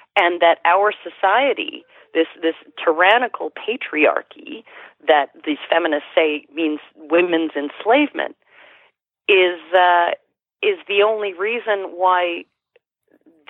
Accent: American